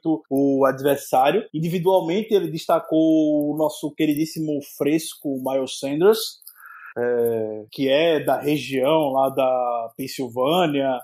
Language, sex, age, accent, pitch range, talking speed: Portuguese, male, 20-39, Brazilian, 135-155 Hz, 105 wpm